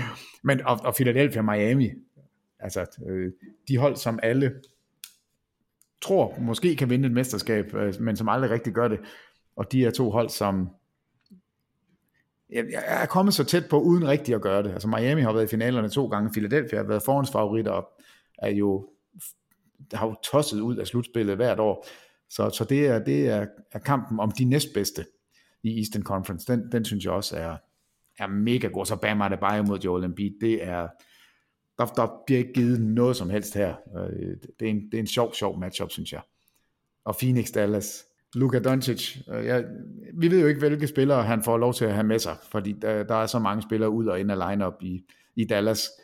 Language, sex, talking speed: Danish, male, 200 wpm